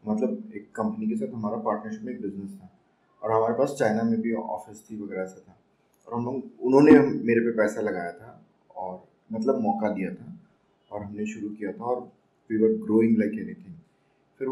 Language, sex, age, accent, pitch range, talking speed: Hindi, male, 30-49, native, 100-135 Hz, 205 wpm